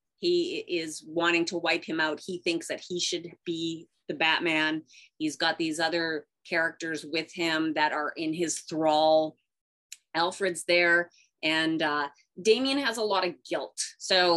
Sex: female